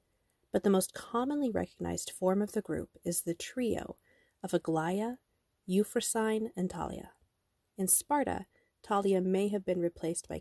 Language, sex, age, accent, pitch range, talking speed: English, female, 30-49, American, 175-205 Hz, 145 wpm